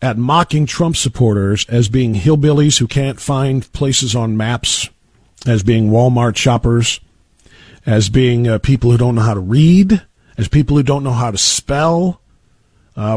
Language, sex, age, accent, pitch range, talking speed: English, male, 50-69, American, 120-185 Hz, 165 wpm